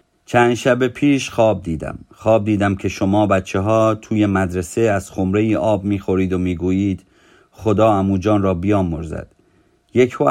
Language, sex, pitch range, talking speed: Persian, male, 90-105 Hz, 150 wpm